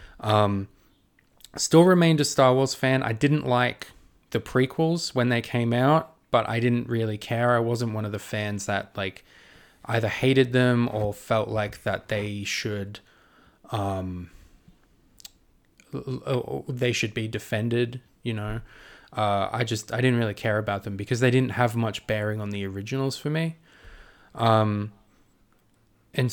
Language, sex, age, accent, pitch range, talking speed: English, male, 20-39, Australian, 105-125 Hz, 155 wpm